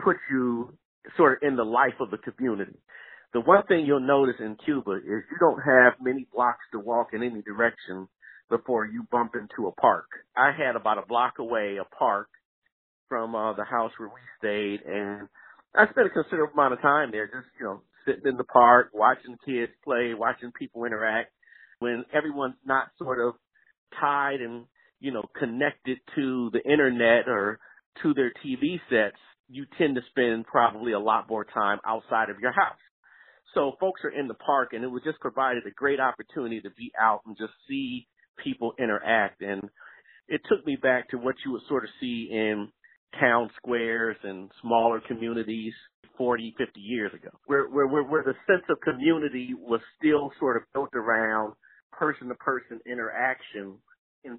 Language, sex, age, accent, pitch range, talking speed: English, male, 50-69, American, 115-140 Hz, 180 wpm